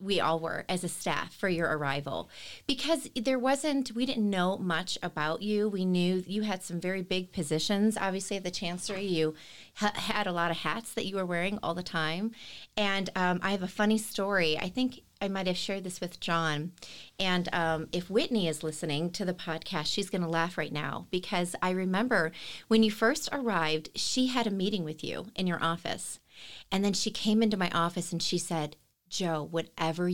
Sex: female